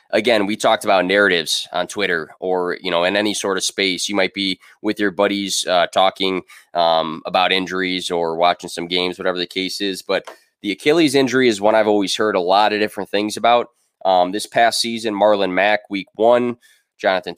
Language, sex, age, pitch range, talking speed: English, male, 20-39, 95-115 Hz, 200 wpm